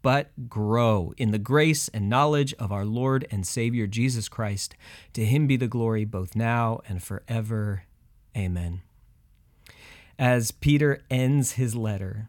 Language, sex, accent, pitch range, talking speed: English, male, American, 105-135 Hz, 140 wpm